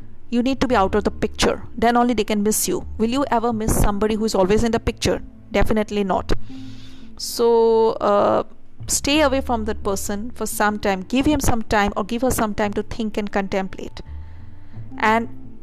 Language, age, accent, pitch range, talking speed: English, 50-69, Indian, 185-220 Hz, 195 wpm